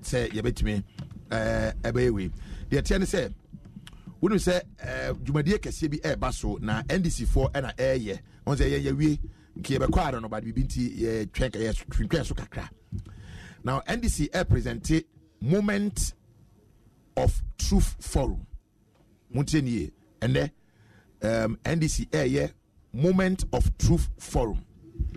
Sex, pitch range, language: male, 105-145 Hz, English